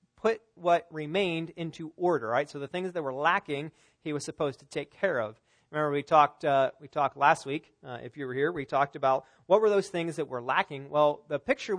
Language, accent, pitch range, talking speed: English, American, 145-180 Hz, 230 wpm